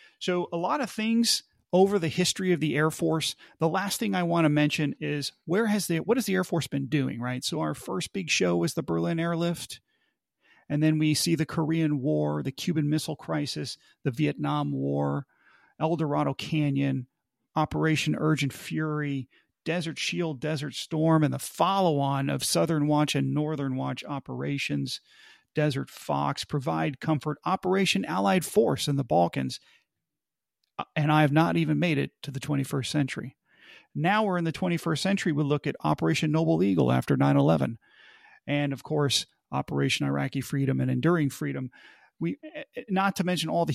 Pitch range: 140-165 Hz